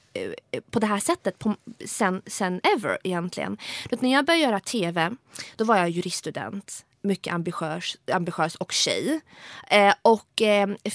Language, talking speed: English, 150 wpm